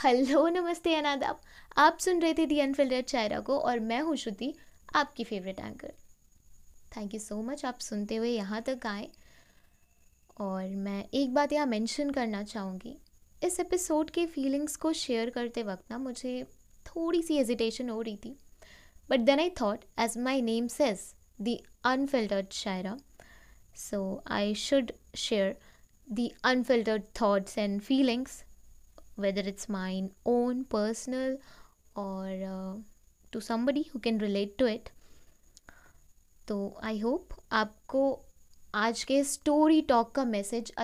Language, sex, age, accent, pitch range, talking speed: Hindi, female, 20-39, native, 205-265 Hz, 140 wpm